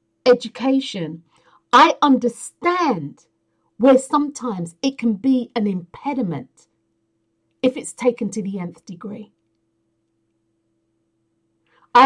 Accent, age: British, 50-69